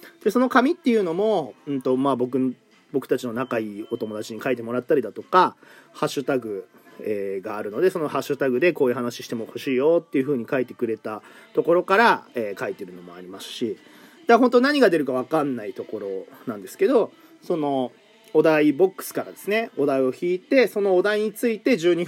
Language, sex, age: Japanese, male, 30-49